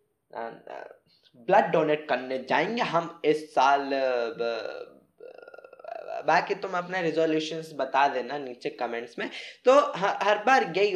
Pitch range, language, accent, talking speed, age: 150-195 Hz, Hindi, native, 115 wpm, 20-39